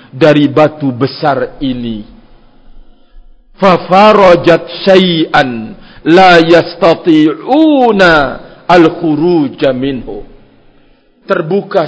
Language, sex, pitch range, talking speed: Indonesian, male, 145-200 Hz, 55 wpm